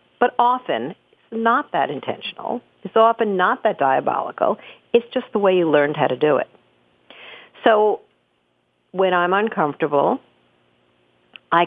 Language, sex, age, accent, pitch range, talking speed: English, female, 50-69, American, 140-190 Hz, 135 wpm